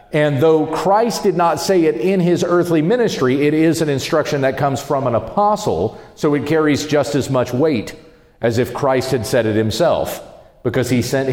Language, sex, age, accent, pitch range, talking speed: English, male, 40-59, American, 115-165 Hz, 195 wpm